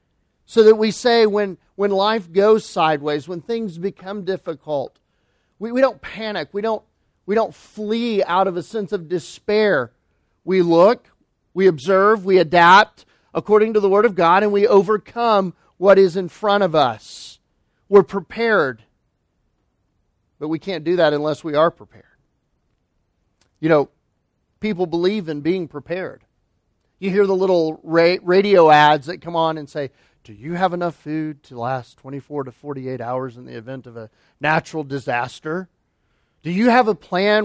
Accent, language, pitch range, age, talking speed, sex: American, English, 155-205 Hz, 40-59, 160 wpm, male